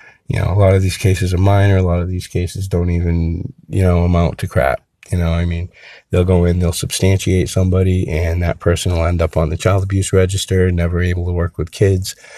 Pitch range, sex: 85-100 Hz, male